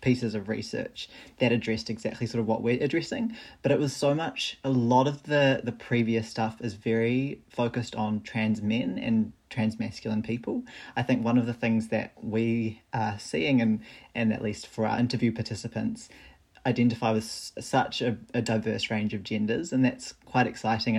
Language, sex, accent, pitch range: English, male, Australian, 110-125 Hz